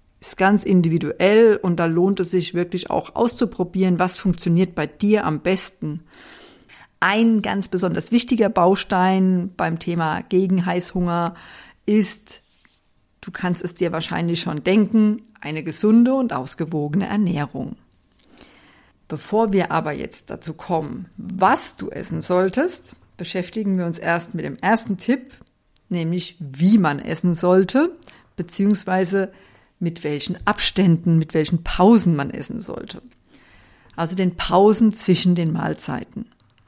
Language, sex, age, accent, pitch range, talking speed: German, female, 50-69, German, 170-215 Hz, 125 wpm